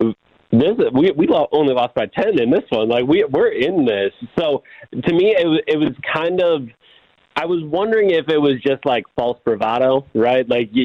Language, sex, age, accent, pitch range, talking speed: English, male, 30-49, American, 125-155 Hz, 205 wpm